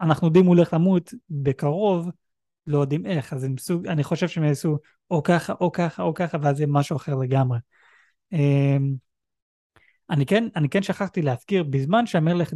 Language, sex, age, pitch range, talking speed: Hebrew, male, 30-49, 135-170 Hz, 160 wpm